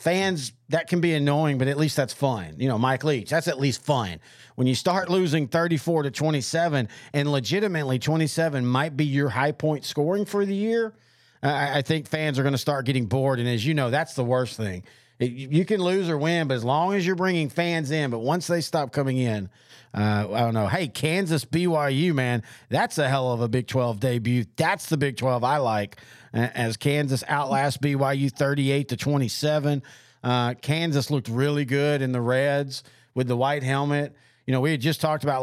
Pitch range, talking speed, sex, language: 130-155 Hz, 210 wpm, male, English